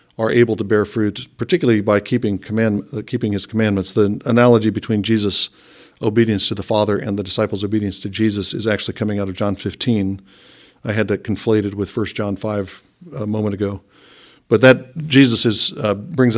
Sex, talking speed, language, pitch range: male, 185 wpm, English, 100-115 Hz